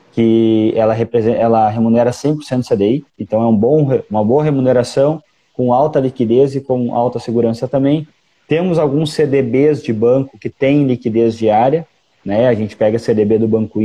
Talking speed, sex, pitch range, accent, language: 165 wpm, male, 120-150 Hz, Brazilian, Portuguese